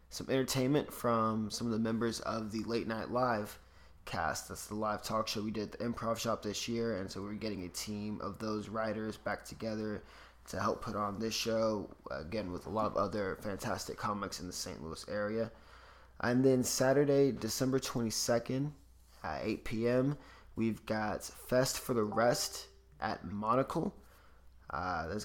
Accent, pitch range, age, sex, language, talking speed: American, 110-125 Hz, 20-39, male, English, 175 wpm